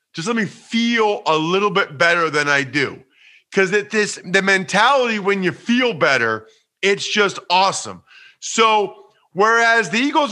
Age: 40-59